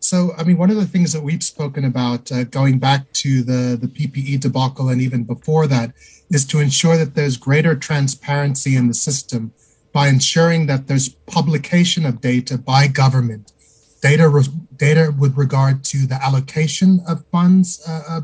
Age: 30-49